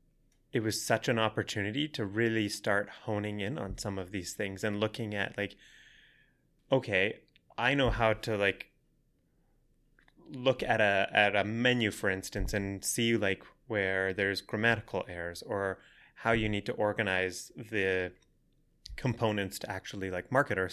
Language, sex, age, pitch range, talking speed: English, male, 20-39, 95-110 Hz, 155 wpm